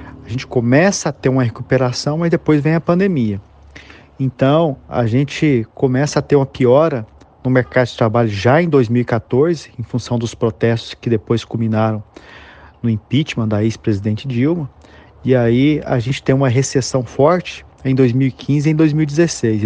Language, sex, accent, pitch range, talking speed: Portuguese, male, Brazilian, 115-140 Hz, 160 wpm